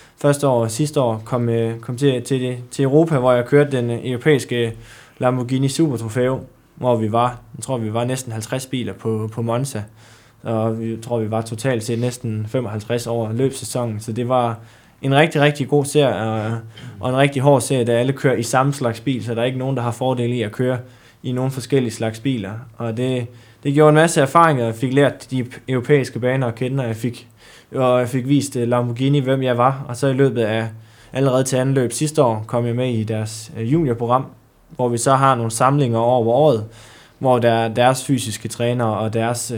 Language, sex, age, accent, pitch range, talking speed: Danish, male, 20-39, native, 115-135 Hz, 215 wpm